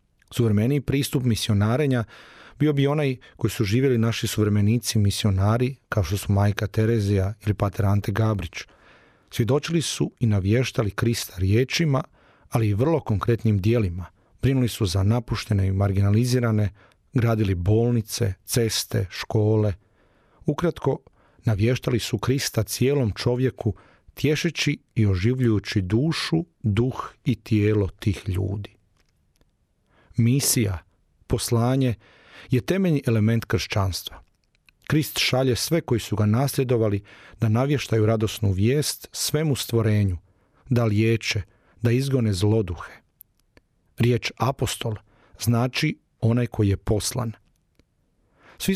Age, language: 40-59, Croatian